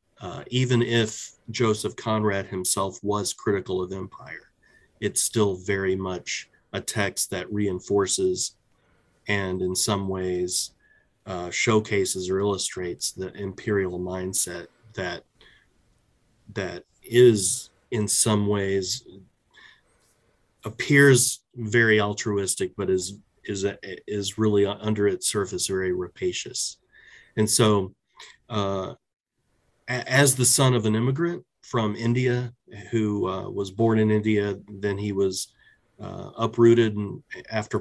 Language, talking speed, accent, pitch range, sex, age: English, 115 wpm, American, 95-115 Hz, male, 30-49